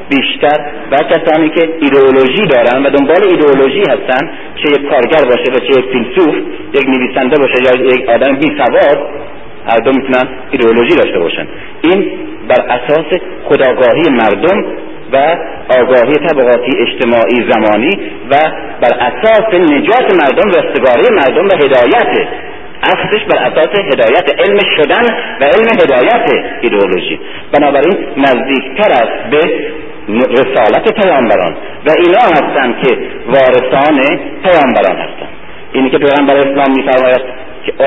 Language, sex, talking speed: Persian, male, 125 wpm